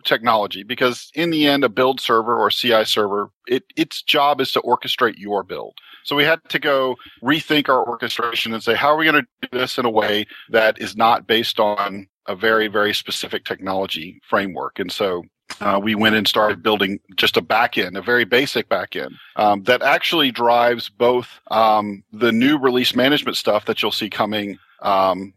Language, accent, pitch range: English, American, 105-125 Hz